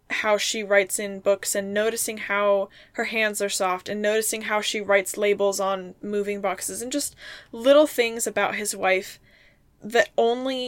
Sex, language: female, English